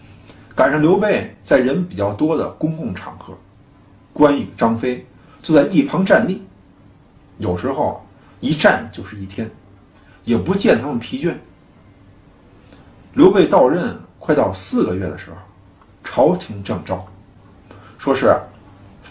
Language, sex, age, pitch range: Chinese, male, 50-69, 95-155 Hz